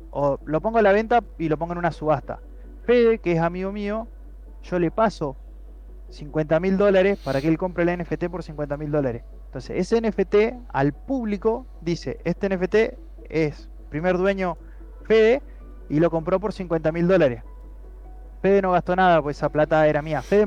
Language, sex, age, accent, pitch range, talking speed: Spanish, male, 20-39, Argentinian, 145-190 Hz, 175 wpm